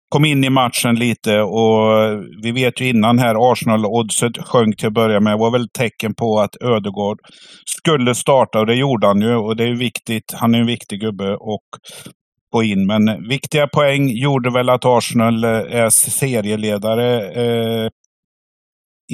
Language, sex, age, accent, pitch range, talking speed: Swedish, male, 50-69, native, 105-125 Hz, 170 wpm